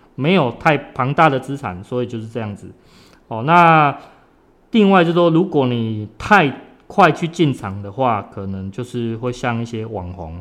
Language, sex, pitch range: Chinese, male, 110-145 Hz